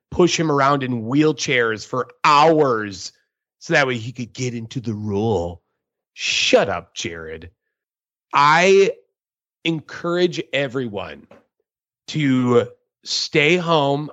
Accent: American